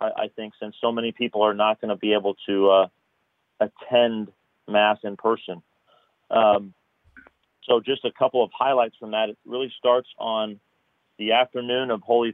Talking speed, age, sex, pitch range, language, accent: 170 wpm, 40-59, male, 105-120 Hz, English, American